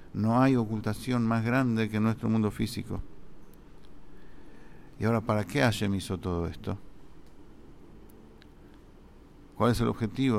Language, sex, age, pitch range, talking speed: English, male, 50-69, 105-125 Hz, 120 wpm